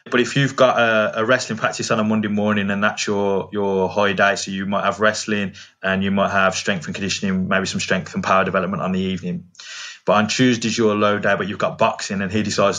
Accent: British